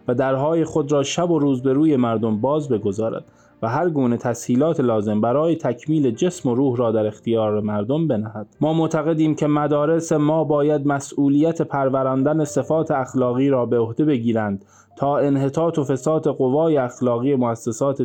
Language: Persian